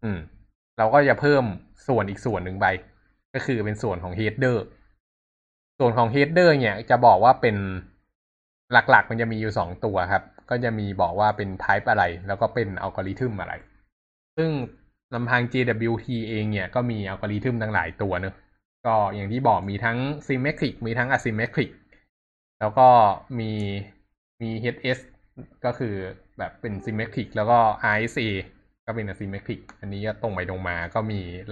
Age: 20-39